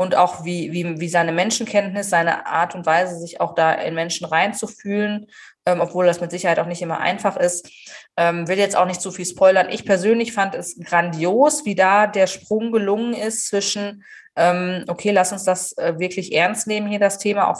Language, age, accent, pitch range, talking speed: German, 20-39, German, 175-205 Hz, 210 wpm